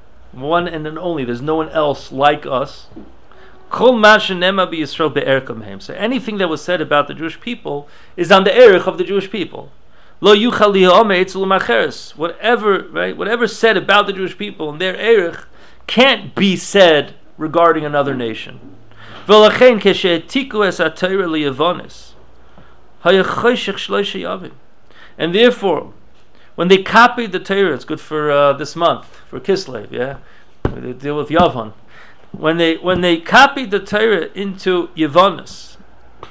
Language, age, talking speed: English, 40-59, 120 wpm